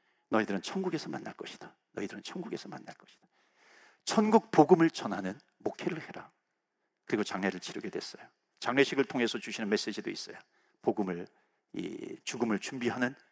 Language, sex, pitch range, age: Korean, male, 140-225 Hz, 50-69